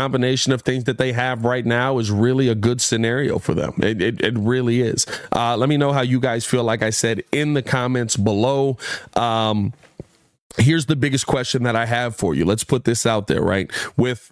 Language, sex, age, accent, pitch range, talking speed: English, male, 20-39, American, 110-135 Hz, 220 wpm